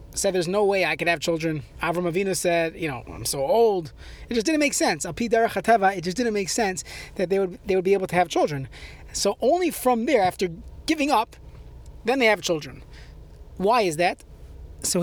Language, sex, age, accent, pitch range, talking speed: English, male, 30-49, American, 170-225 Hz, 205 wpm